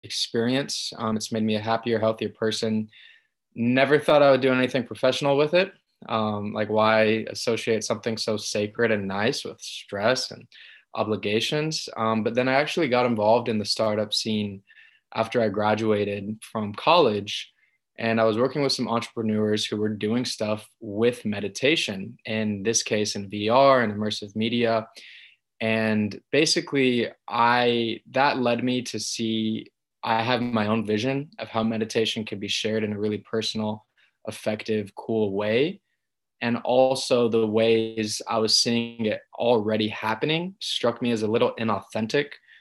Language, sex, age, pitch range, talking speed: English, male, 20-39, 105-120 Hz, 155 wpm